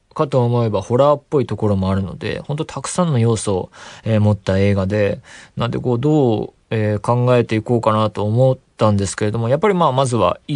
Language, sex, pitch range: Japanese, male, 105-155 Hz